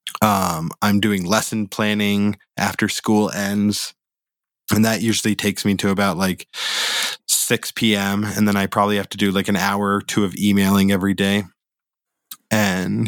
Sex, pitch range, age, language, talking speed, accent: male, 100-115 Hz, 20-39, English, 160 wpm, American